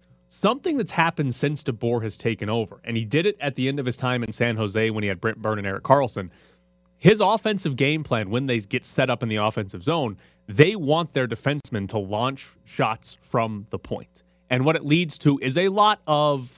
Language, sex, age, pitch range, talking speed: English, male, 30-49, 110-150 Hz, 220 wpm